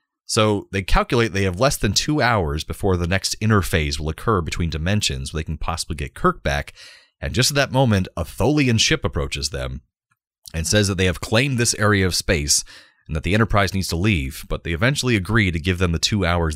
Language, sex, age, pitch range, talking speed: English, male, 30-49, 80-110 Hz, 220 wpm